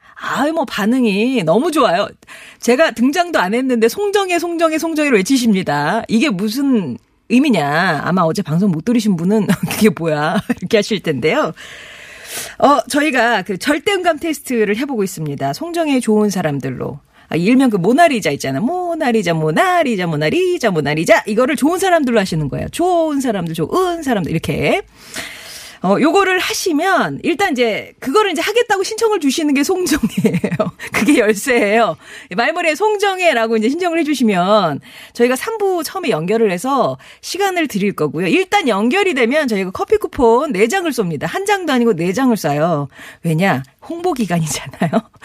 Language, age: Korean, 40-59